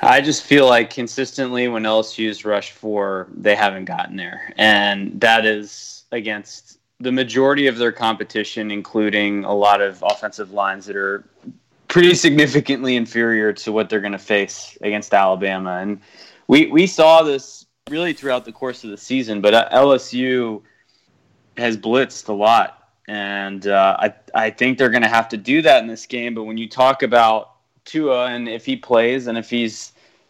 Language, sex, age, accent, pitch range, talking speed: English, male, 20-39, American, 105-120 Hz, 175 wpm